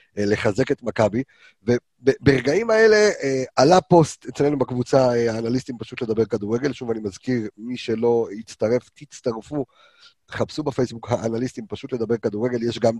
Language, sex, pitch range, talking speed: Hebrew, male, 115-145 Hz, 130 wpm